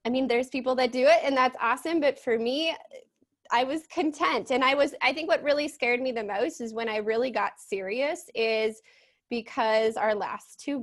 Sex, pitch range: female, 205-255 Hz